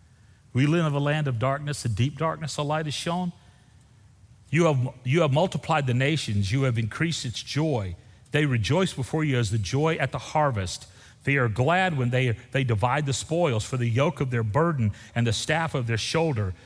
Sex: male